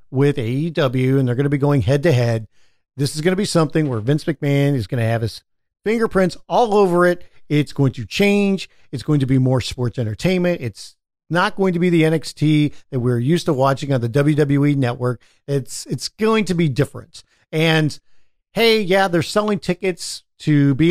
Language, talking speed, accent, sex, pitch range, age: English, 200 wpm, American, male, 135-175 Hz, 50-69